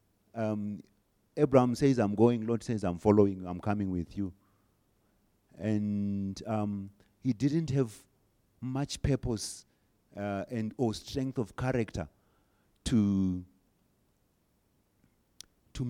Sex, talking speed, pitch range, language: male, 105 wpm, 95-125 Hz, English